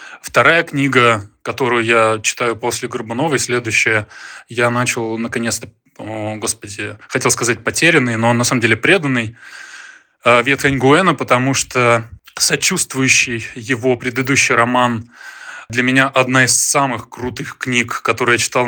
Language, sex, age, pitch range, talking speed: Russian, male, 20-39, 120-145 Hz, 120 wpm